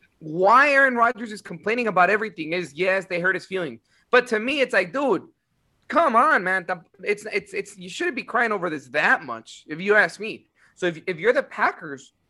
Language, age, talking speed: English, 30-49, 210 wpm